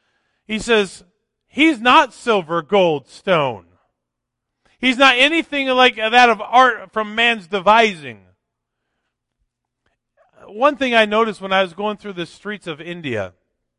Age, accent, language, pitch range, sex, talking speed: 40-59, American, English, 140-200 Hz, male, 130 wpm